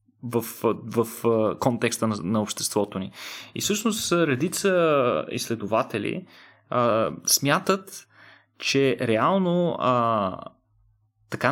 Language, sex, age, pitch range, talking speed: Bulgarian, male, 20-39, 115-145 Hz, 85 wpm